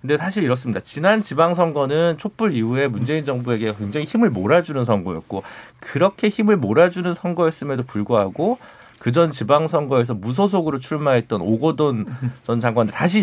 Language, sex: Korean, male